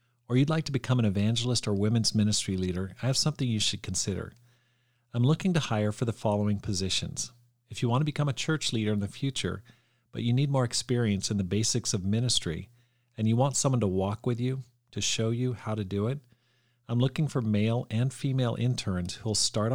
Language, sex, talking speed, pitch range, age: English, male, 215 wpm, 105-125 Hz, 40-59